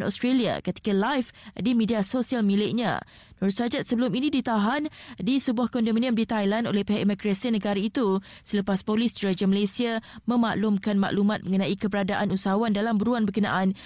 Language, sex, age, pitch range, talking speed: Malay, female, 20-39, 200-240 Hz, 145 wpm